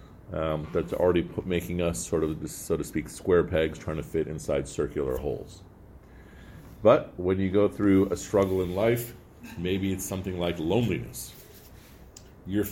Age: 40-59